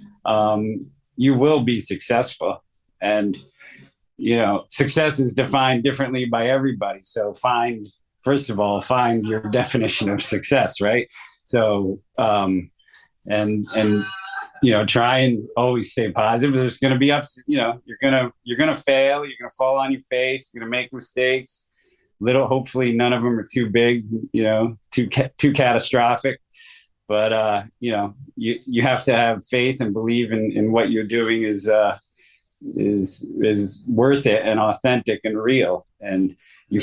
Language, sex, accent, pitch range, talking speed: English, male, American, 105-130 Hz, 170 wpm